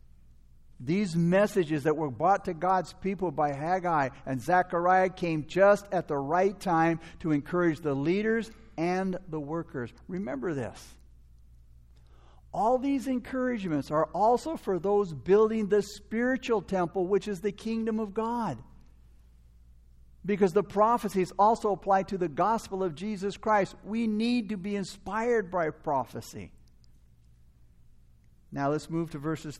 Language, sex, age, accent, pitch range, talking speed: English, male, 60-79, American, 145-205 Hz, 135 wpm